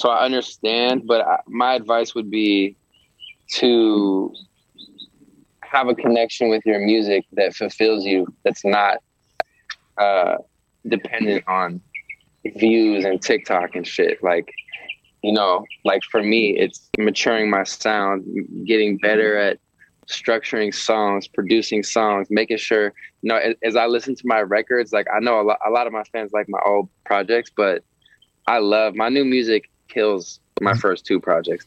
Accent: American